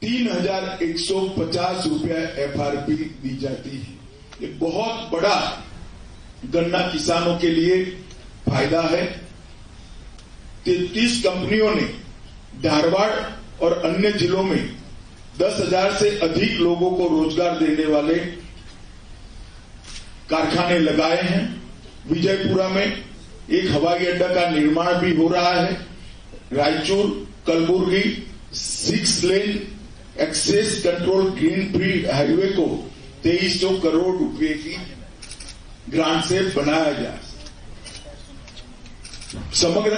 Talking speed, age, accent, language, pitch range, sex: 100 wpm, 40-59, native, Hindi, 160-195 Hz, male